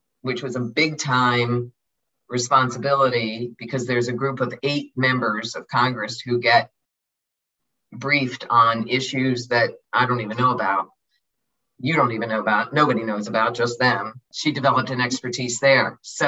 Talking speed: 155 wpm